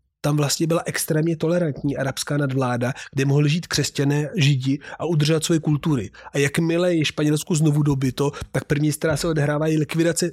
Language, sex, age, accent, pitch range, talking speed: Czech, male, 30-49, native, 140-170 Hz, 165 wpm